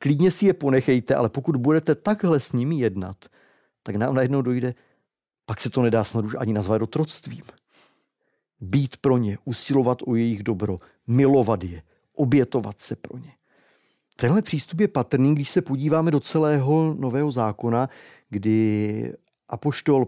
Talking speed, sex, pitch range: 145 wpm, male, 115-155 Hz